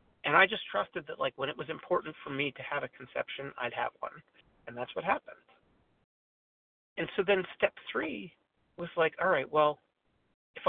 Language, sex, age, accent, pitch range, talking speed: English, male, 40-59, American, 140-205 Hz, 190 wpm